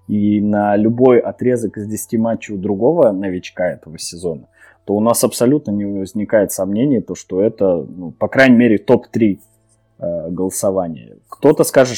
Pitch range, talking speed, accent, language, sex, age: 95-110 Hz, 155 wpm, native, Russian, male, 20-39